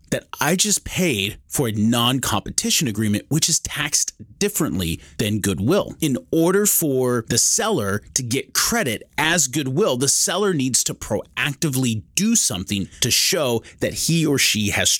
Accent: American